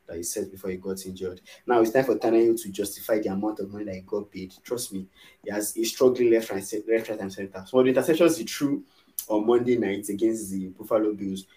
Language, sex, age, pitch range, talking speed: English, male, 20-39, 100-165 Hz, 235 wpm